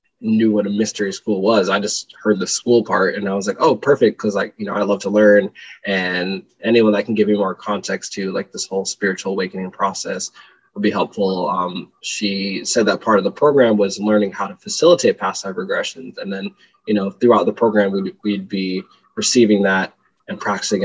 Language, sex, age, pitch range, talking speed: English, male, 20-39, 95-110 Hz, 215 wpm